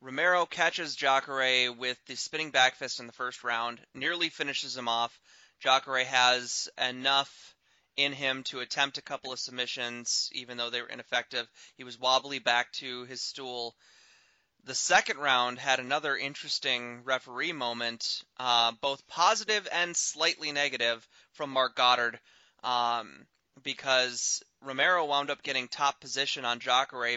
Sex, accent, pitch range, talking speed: male, American, 125-145 Hz, 145 wpm